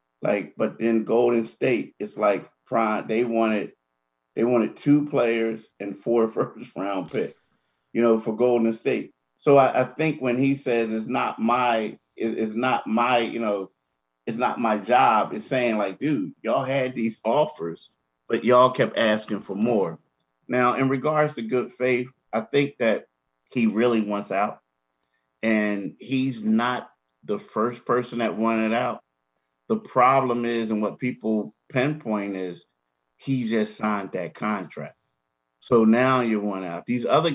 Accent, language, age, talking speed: American, English, 30-49, 160 wpm